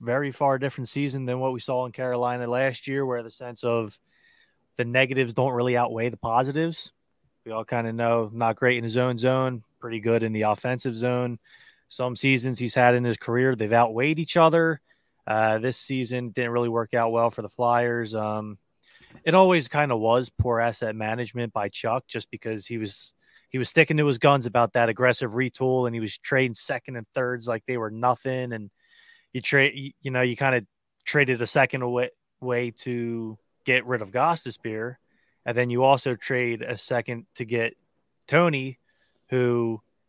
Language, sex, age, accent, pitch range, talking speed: English, male, 20-39, American, 115-135 Hz, 190 wpm